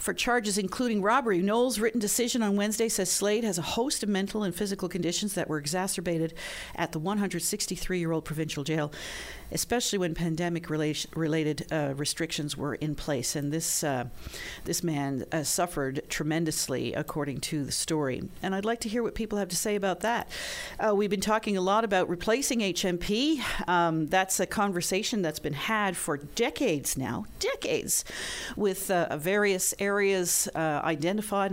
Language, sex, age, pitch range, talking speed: English, female, 50-69, 160-205 Hz, 165 wpm